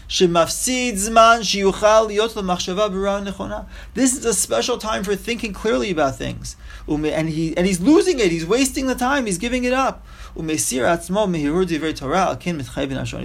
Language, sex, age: English, male, 30-49